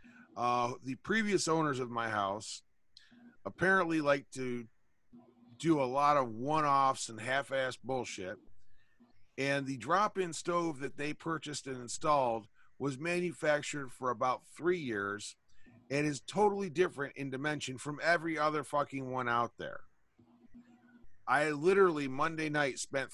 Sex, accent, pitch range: male, American, 125-165 Hz